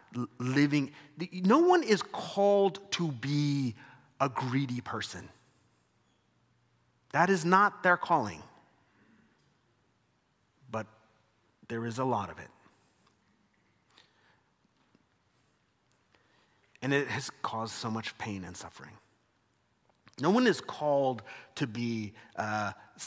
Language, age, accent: English, 30-49, American